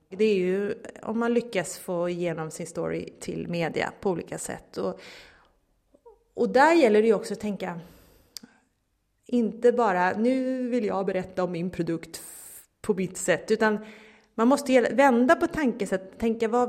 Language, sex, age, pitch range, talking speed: Swedish, female, 30-49, 190-245 Hz, 160 wpm